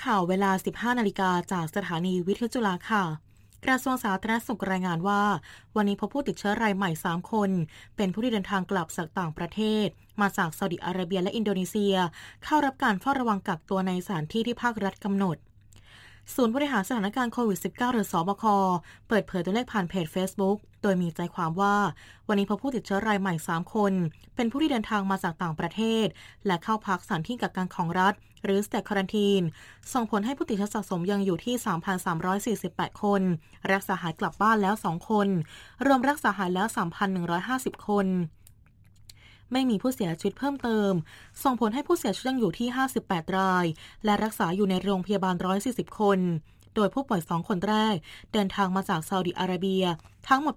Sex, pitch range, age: female, 180-215 Hz, 20-39